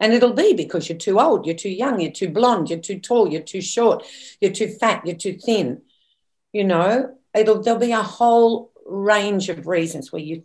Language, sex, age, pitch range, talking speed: English, female, 50-69, 155-210 Hz, 205 wpm